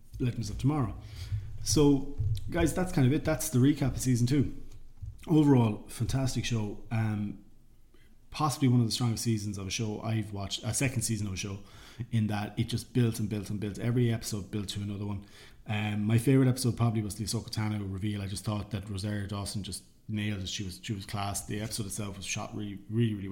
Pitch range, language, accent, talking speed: 105-120 Hz, English, Irish, 215 wpm